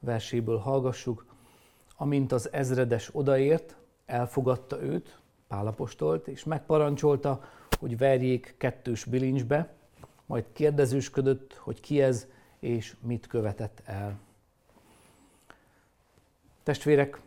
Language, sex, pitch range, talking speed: Hungarian, male, 120-140 Hz, 85 wpm